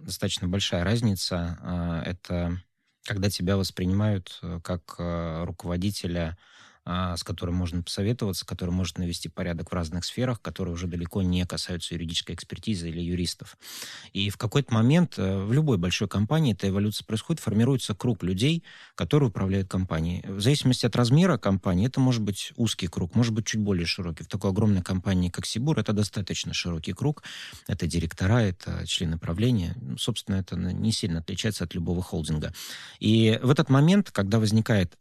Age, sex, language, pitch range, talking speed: 20-39, male, Russian, 90-115 Hz, 155 wpm